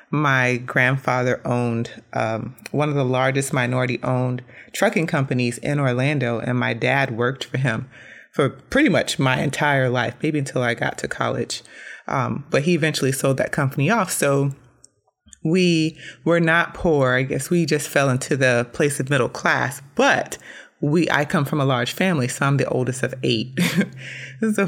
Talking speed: 175 wpm